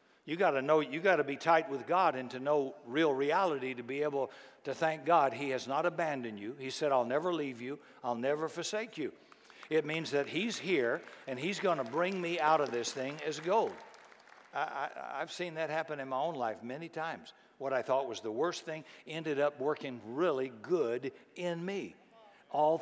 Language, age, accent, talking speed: English, 60-79, American, 215 wpm